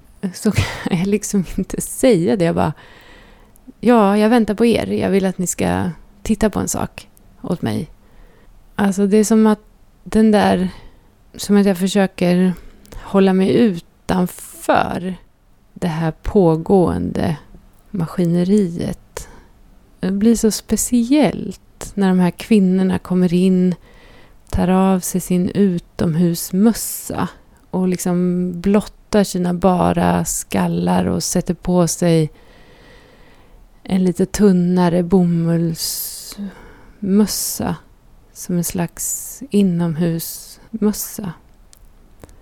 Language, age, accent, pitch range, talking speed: Swedish, 30-49, native, 170-205 Hz, 105 wpm